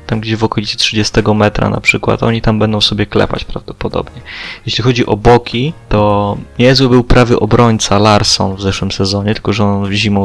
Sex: male